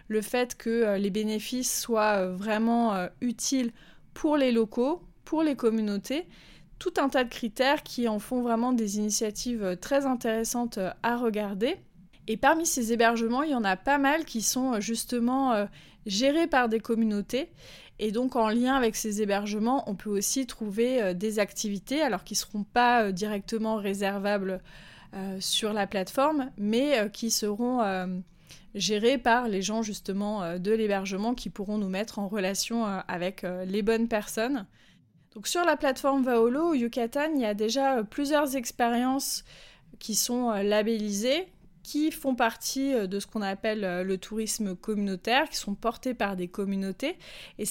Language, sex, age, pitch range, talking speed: French, female, 20-39, 205-255 Hz, 155 wpm